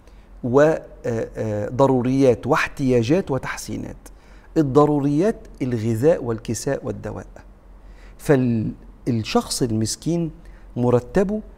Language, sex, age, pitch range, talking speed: Arabic, male, 50-69, 110-135 Hz, 55 wpm